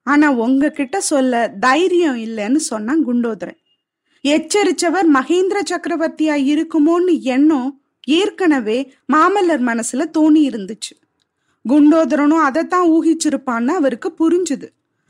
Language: Tamil